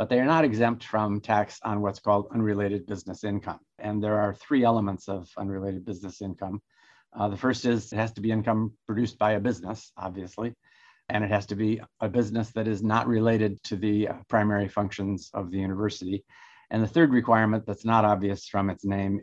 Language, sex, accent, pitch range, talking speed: English, male, American, 100-110 Hz, 200 wpm